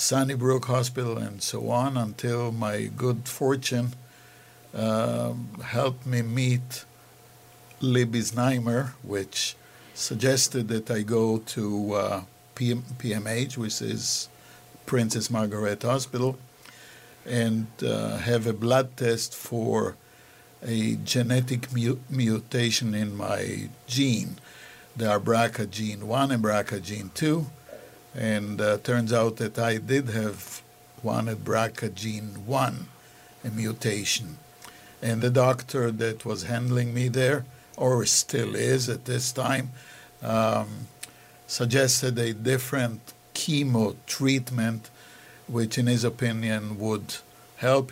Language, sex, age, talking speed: English, male, 60-79, 115 wpm